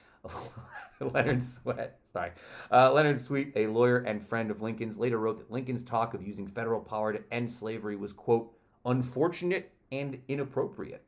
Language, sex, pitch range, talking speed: English, male, 100-130 Hz, 140 wpm